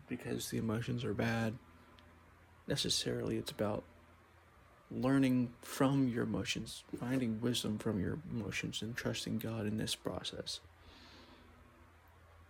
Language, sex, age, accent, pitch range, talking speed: English, male, 20-39, American, 85-125 Hz, 110 wpm